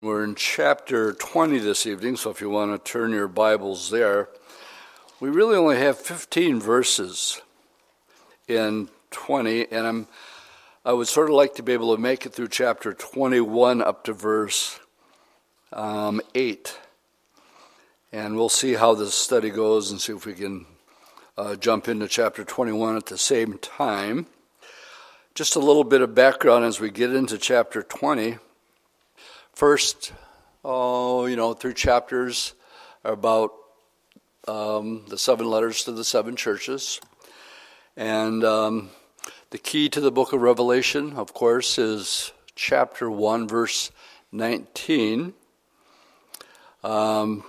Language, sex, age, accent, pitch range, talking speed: English, male, 60-79, American, 110-125 Hz, 140 wpm